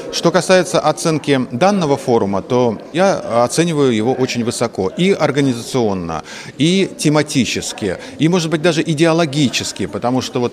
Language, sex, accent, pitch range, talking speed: Russian, male, native, 115-150 Hz, 130 wpm